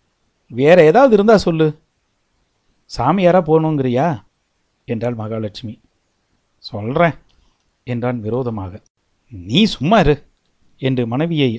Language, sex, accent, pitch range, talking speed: Tamil, male, native, 140-205 Hz, 80 wpm